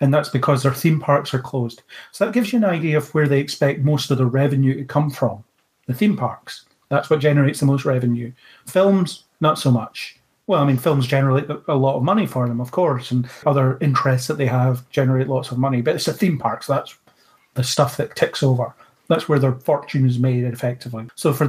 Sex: male